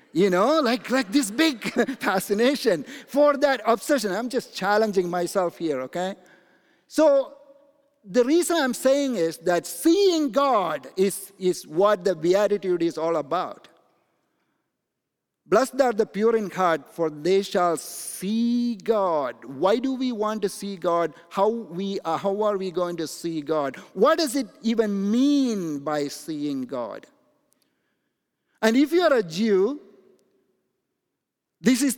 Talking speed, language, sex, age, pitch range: 145 wpm, English, male, 50-69, 185-265 Hz